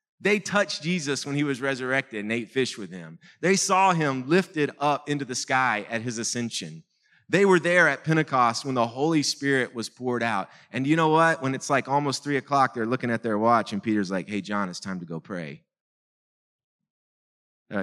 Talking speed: 205 wpm